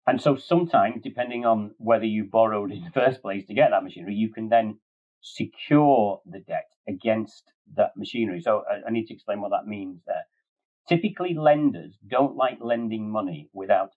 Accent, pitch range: British, 110-135 Hz